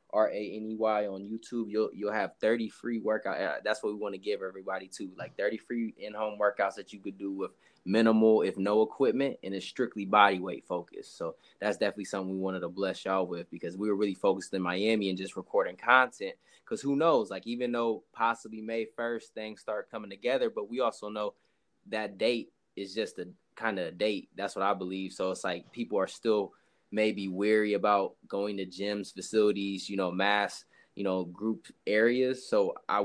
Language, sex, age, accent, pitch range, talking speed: English, male, 20-39, American, 100-115 Hz, 200 wpm